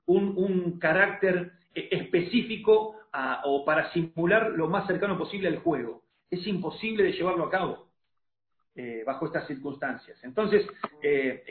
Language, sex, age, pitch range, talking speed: Spanish, male, 40-59, 150-200 Hz, 135 wpm